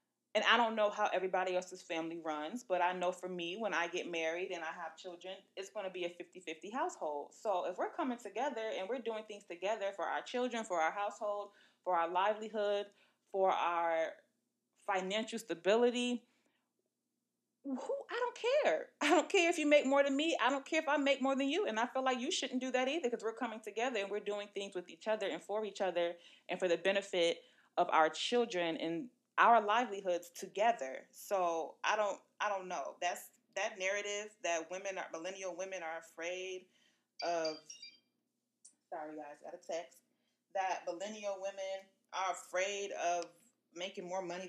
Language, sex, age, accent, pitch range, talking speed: English, female, 20-39, American, 175-250 Hz, 190 wpm